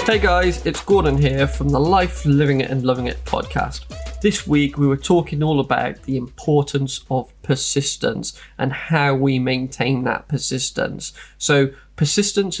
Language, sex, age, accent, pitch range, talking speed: English, male, 20-39, British, 130-145 Hz, 155 wpm